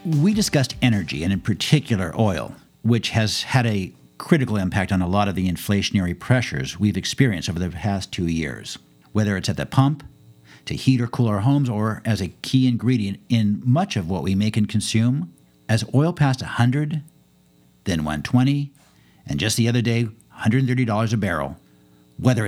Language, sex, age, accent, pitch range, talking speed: English, male, 50-69, American, 100-135 Hz, 175 wpm